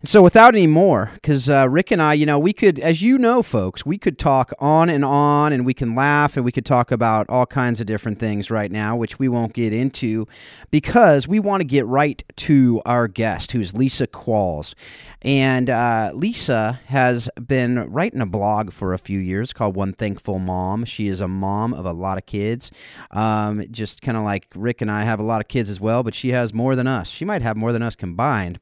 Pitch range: 100-125 Hz